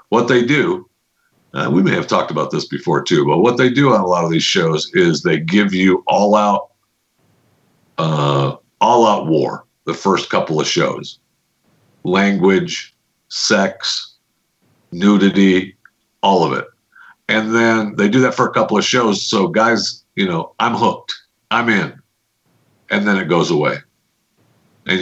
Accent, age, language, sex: American, 50-69, English, male